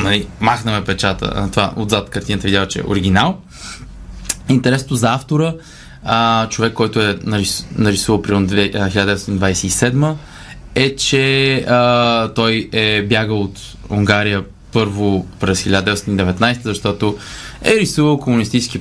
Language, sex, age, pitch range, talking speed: Bulgarian, male, 20-39, 100-135 Hz, 110 wpm